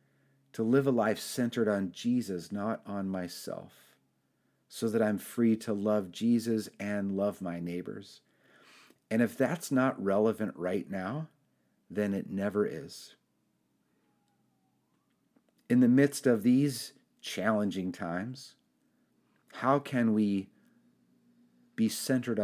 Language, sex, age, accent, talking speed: English, male, 40-59, American, 120 wpm